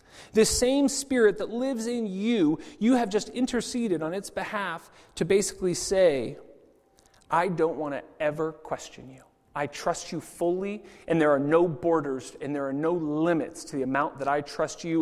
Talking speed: 180 wpm